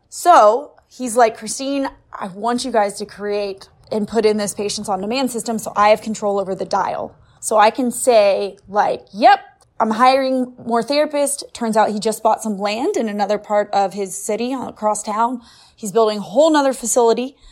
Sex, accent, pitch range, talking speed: female, American, 205-265 Hz, 190 wpm